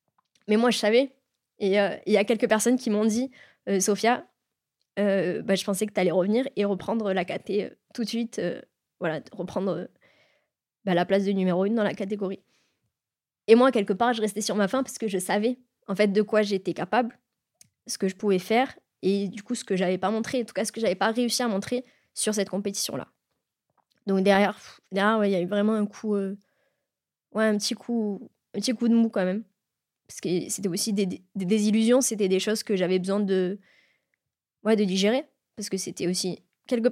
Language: French